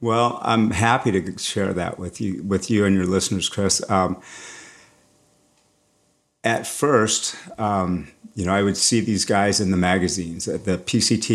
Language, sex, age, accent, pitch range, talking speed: English, male, 50-69, American, 95-110 Hz, 160 wpm